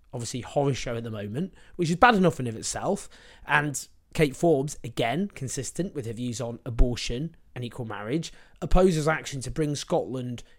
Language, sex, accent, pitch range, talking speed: English, male, British, 120-160 Hz, 175 wpm